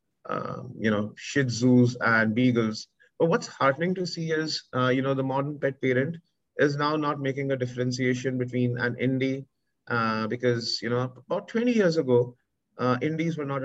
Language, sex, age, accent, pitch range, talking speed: English, male, 30-49, Indian, 110-135 Hz, 180 wpm